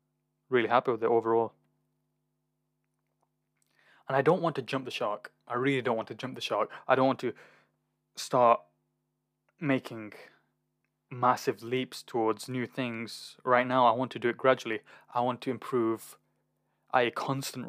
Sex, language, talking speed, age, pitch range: male, English, 160 wpm, 20-39, 85-125 Hz